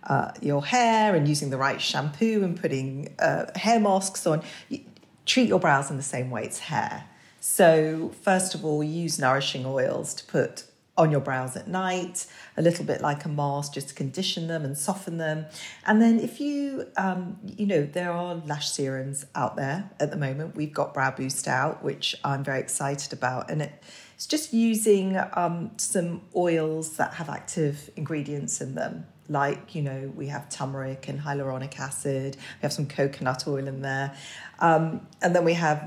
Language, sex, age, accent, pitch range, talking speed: English, female, 40-59, British, 140-180 Hz, 185 wpm